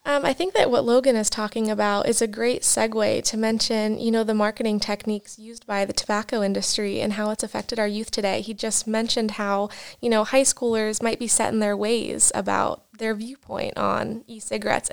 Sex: female